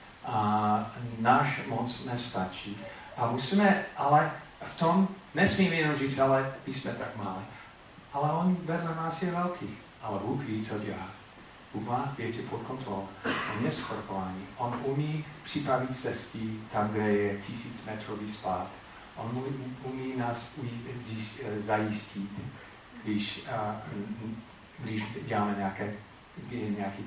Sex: male